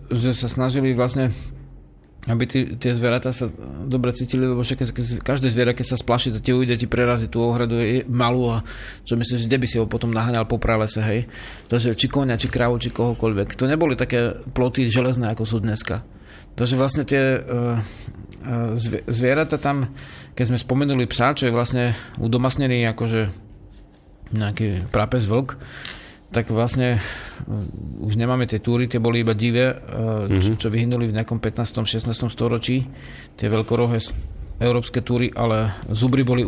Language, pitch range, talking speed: Slovak, 110-125 Hz, 160 wpm